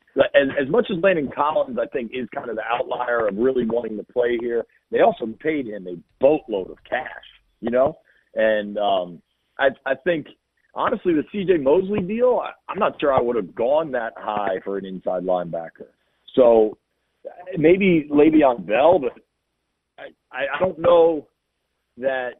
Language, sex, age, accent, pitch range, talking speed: English, male, 40-59, American, 115-170 Hz, 170 wpm